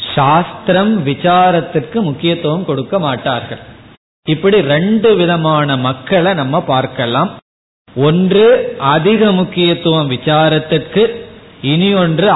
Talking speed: 80 wpm